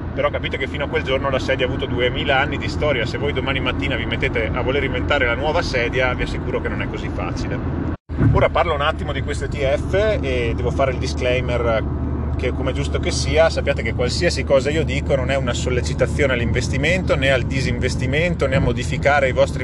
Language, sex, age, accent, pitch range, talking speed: Italian, male, 30-49, native, 75-90 Hz, 210 wpm